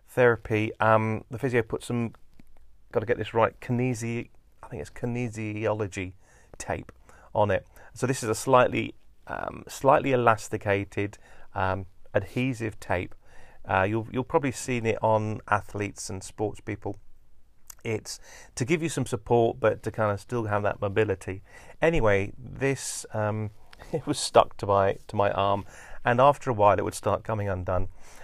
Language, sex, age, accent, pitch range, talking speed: English, male, 30-49, British, 100-120 Hz, 160 wpm